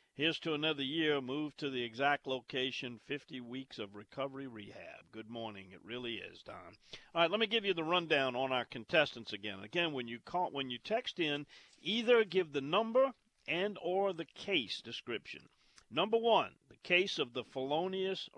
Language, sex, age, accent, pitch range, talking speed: English, male, 50-69, American, 125-175 Hz, 185 wpm